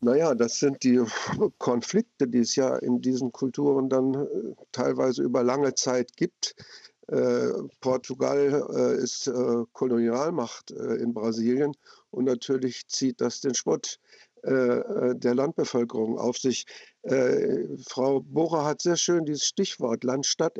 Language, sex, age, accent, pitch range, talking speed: German, male, 50-69, German, 125-145 Hz, 140 wpm